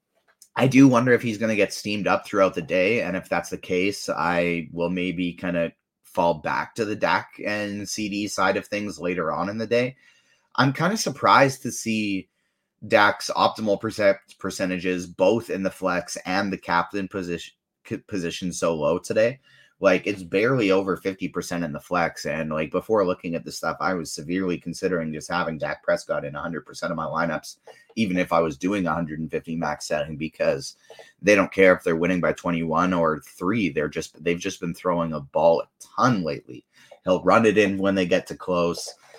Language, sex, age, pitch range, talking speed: English, male, 30-49, 85-100 Hz, 205 wpm